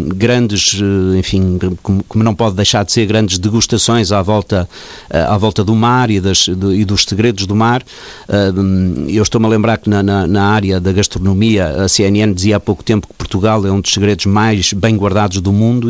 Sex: male